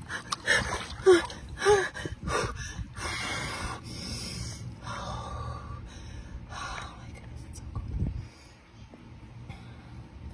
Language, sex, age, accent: English, female, 30-49, American